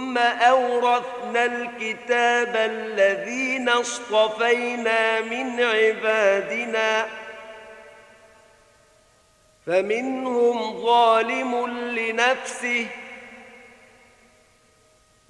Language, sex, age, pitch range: Arabic, male, 50-69, 200-245 Hz